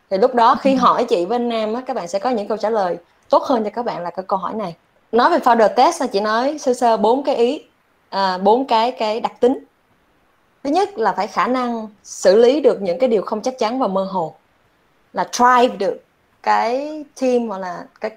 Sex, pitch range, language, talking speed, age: female, 200-255 Hz, Vietnamese, 245 wpm, 20-39